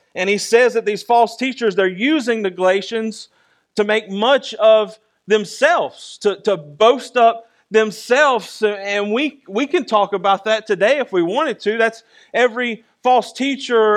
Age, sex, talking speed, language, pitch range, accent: 40-59, male, 160 wpm, English, 205-245 Hz, American